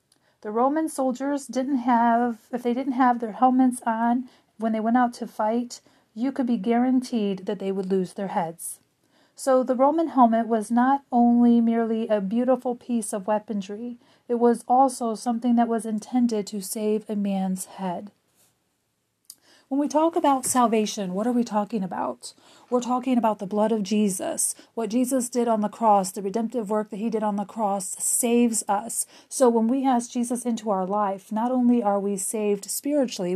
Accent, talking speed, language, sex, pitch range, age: American, 180 wpm, English, female, 210-250 Hz, 40-59